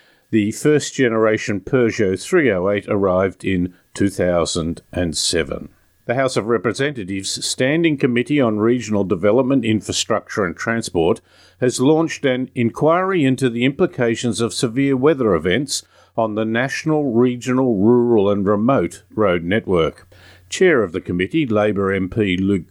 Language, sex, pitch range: English, male, 100-130 Hz